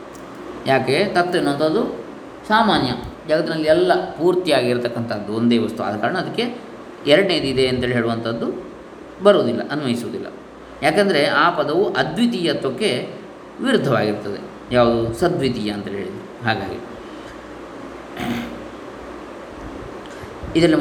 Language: Kannada